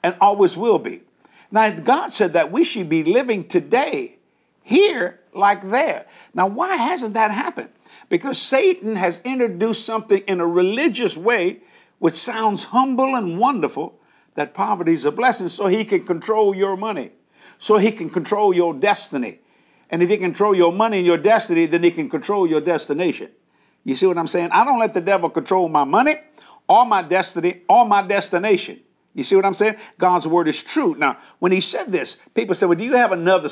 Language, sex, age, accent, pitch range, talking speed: English, male, 60-79, American, 175-225 Hz, 190 wpm